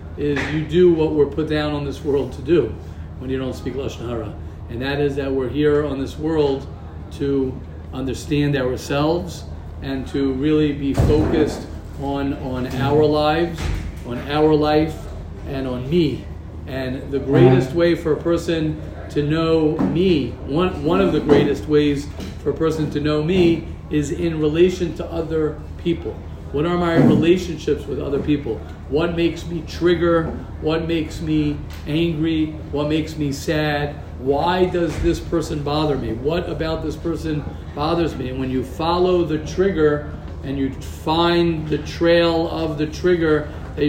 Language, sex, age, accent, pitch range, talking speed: English, male, 40-59, American, 135-160 Hz, 160 wpm